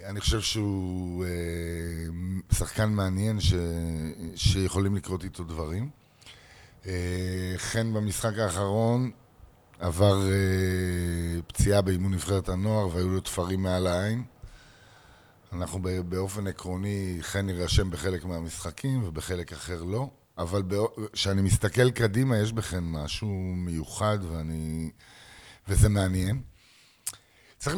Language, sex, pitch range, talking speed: Hebrew, male, 90-115 Hz, 105 wpm